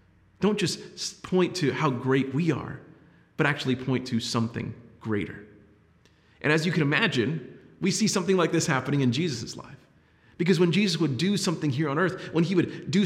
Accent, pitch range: American, 120-160 Hz